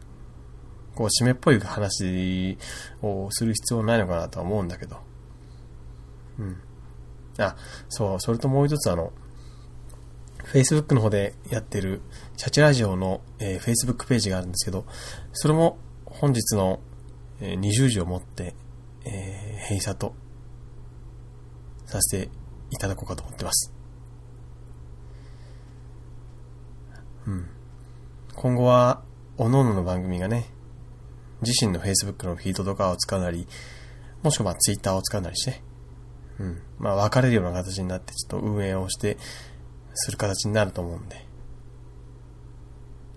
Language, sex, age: Japanese, male, 20-39